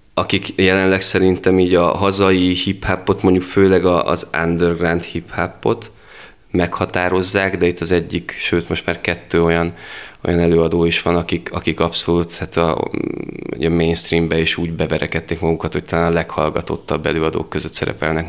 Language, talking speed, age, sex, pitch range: Hungarian, 145 wpm, 20-39, male, 85-95 Hz